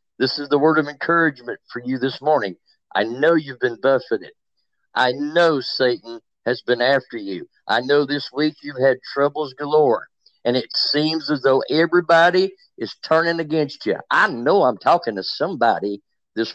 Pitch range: 135-190 Hz